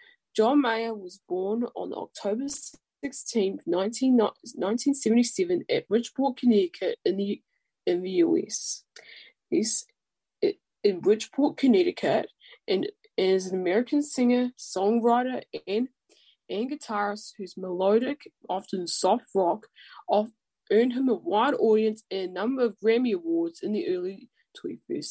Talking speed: 115 wpm